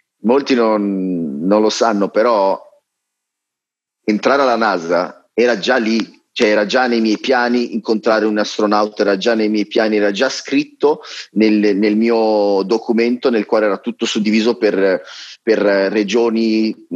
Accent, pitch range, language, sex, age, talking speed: native, 105-165 Hz, Italian, male, 30-49, 150 wpm